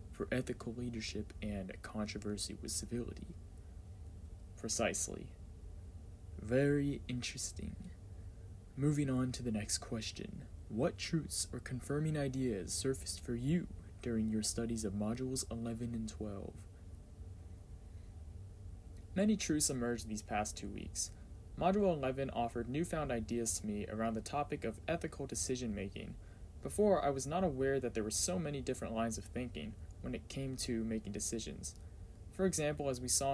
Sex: male